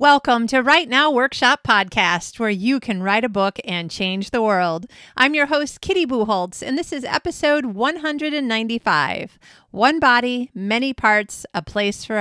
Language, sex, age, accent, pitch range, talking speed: English, female, 30-49, American, 200-255 Hz, 160 wpm